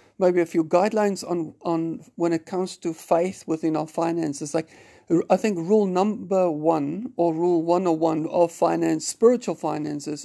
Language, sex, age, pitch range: English, male, 50-69, 160-180 Hz